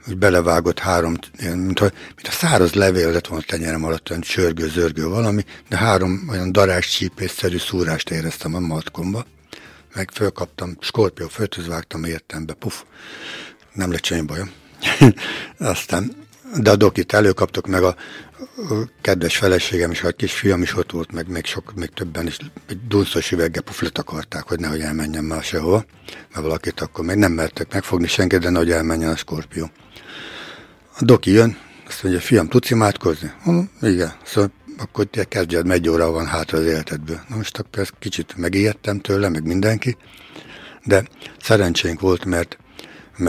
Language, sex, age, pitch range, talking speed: Hungarian, male, 60-79, 80-100 Hz, 155 wpm